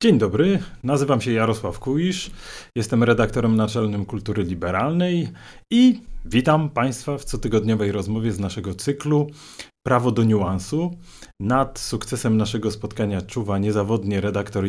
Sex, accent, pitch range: male, native, 110-150 Hz